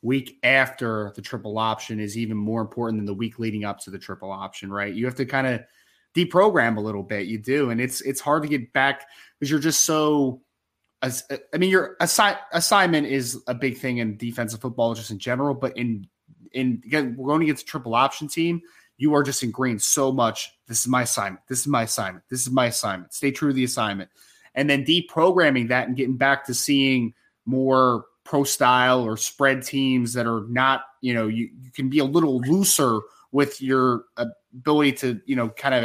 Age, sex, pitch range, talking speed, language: 20-39, male, 115-140 Hz, 210 wpm, English